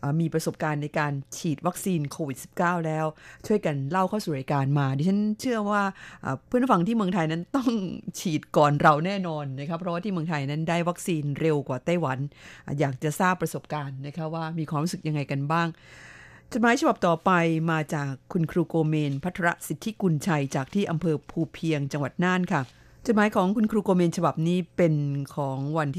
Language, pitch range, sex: Thai, 150-180 Hz, female